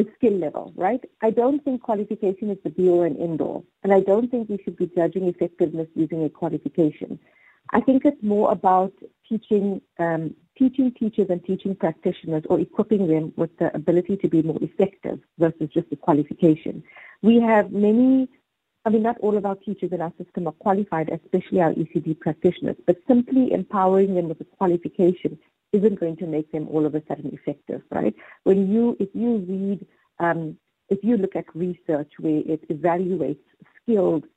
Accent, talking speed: Indian, 185 wpm